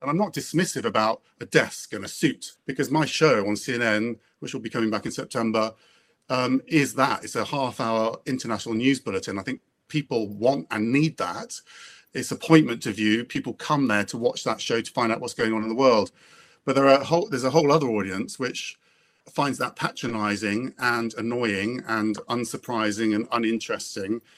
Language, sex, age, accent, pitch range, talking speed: English, male, 40-59, British, 110-135 Hz, 195 wpm